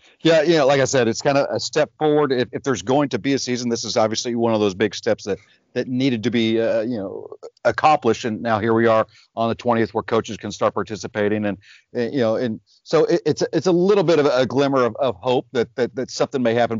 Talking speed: 270 wpm